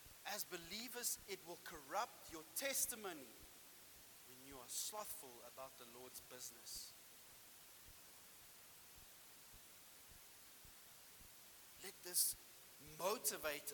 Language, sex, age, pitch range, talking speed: English, male, 30-49, 155-220 Hz, 80 wpm